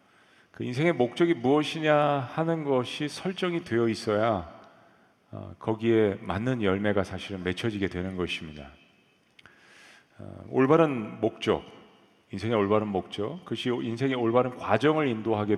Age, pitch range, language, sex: 40-59, 95-125 Hz, Korean, male